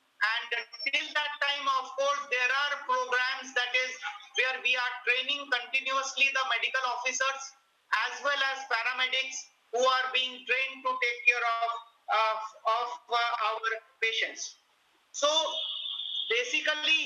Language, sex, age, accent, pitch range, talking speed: English, male, 50-69, Indian, 245-280 Hz, 135 wpm